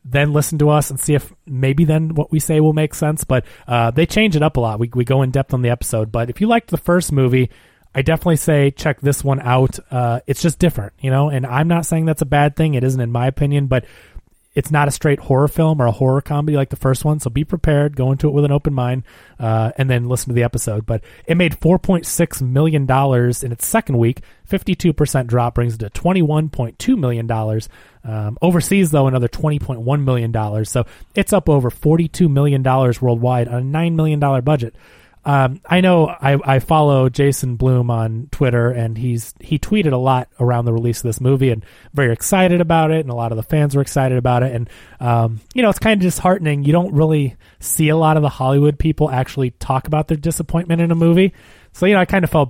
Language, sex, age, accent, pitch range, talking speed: English, male, 30-49, American, 125-155 Hz, 230 wpm